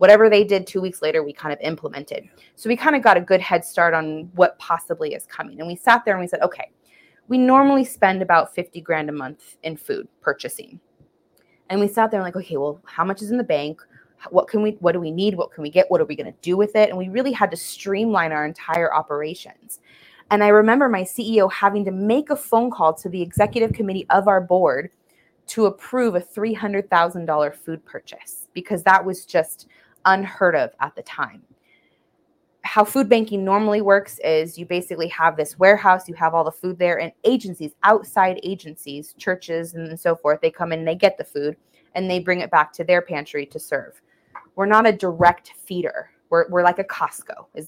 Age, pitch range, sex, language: 20-39, 165-215 Hz, female, English